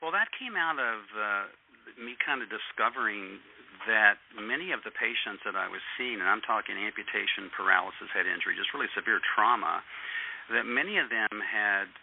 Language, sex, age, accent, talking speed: English, male, 50-69, American, 175 wpm